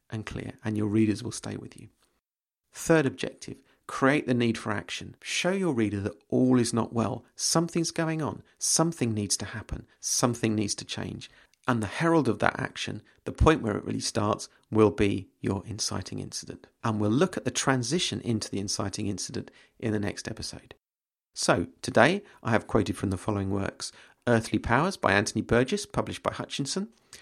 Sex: male